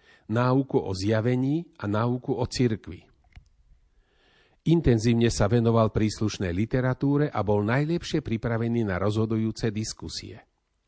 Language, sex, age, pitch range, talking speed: Slovak, male, 40-59, 105-130 Hz, 105 wpm